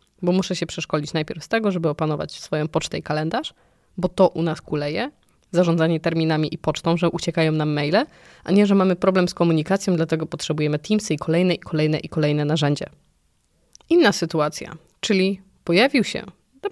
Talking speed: 175 wpm